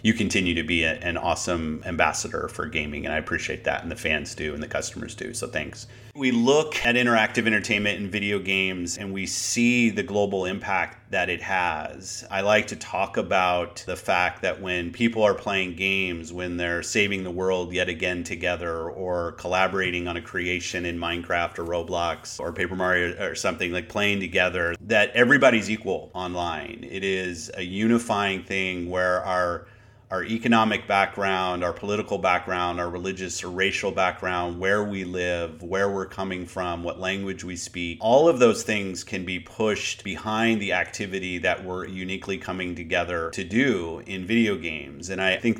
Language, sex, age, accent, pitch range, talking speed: English, male, 30-49, American, 90-105 Hz, 175 wpm